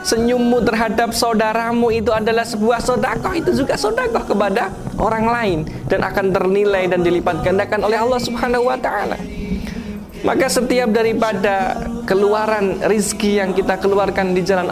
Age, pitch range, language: 20-39, 165-210 Hz, Indonesian